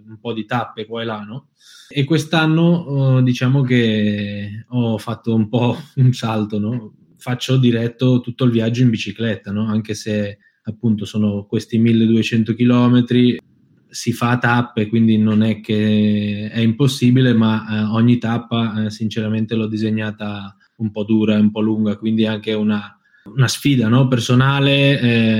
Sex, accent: male, native